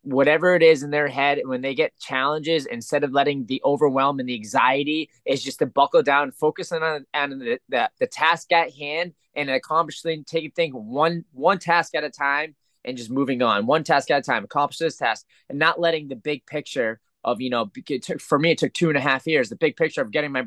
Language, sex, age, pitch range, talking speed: English, male, 20-39, 135-165 Hz, 235 wpm